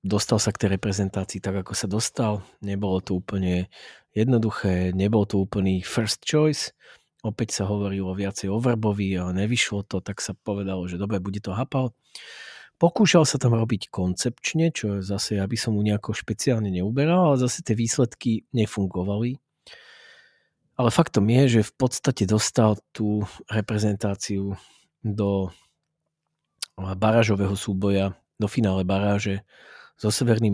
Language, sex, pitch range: Slovak, male, 95-115 Hz